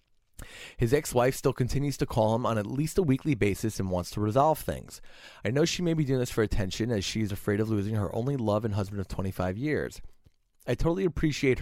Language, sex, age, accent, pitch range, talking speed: English, male, 30-49, American, 100-135 Hz, 225 wpm